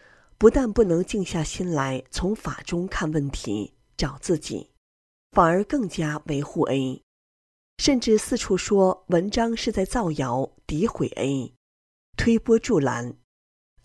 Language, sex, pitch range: Chinese, female, 135-210 Hz